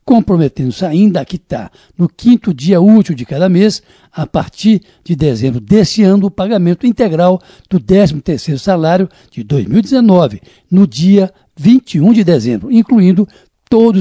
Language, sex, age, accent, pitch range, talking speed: Portuguese, male, 60-79, Brazilian, 155-200 Hz, 135 wpm